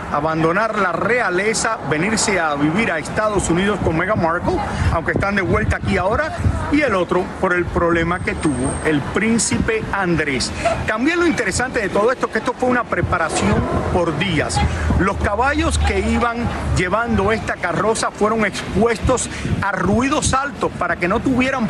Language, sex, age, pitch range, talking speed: Spanish, male, 50-69, 170-230 Hz, 165 wpm